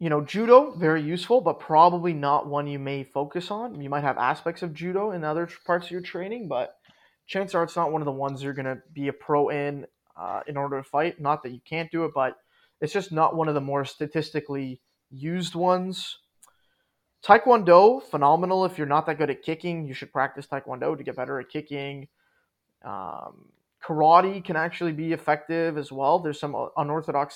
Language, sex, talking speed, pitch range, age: English, male, 200 wpm, 140-165 Hz, 20-39